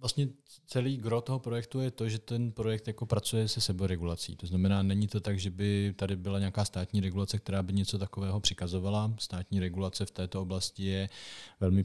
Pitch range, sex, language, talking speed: 95-100 Hz, male, Czech, 195 wpm